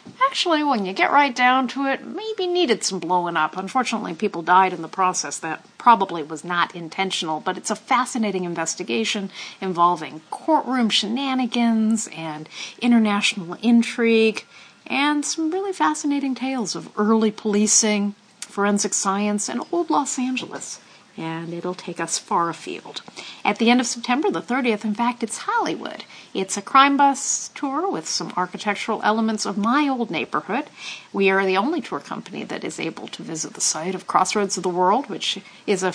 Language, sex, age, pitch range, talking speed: English, female, 50-69, 185-255 Hz, 165 wpm